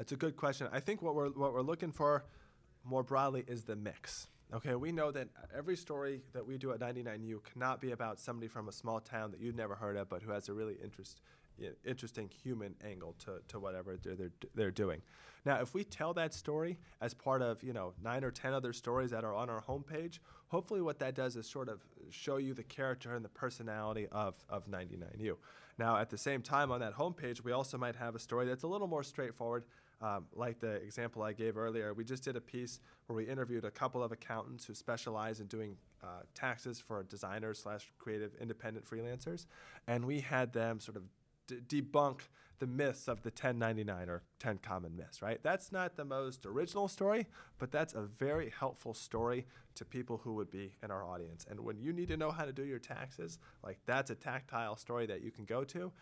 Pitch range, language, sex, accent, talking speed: 110-135 Hz, English, male, American, 220 wpm